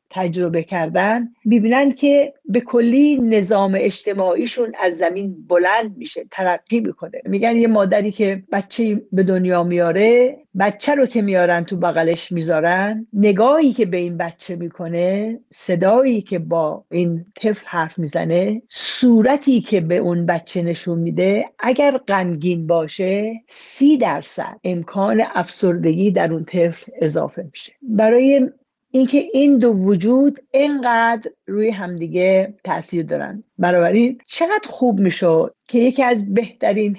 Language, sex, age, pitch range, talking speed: Persian, female, 50-69, 175-230 Hz, 130 wpm